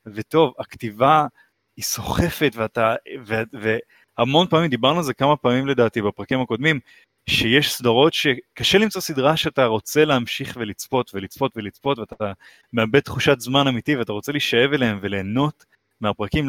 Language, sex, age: Hebrew, male, 30-49